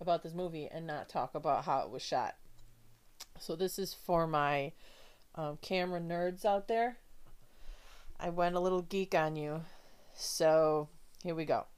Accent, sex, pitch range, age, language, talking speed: American, female, 150-180 Hz, 30-49, English, 165 wpm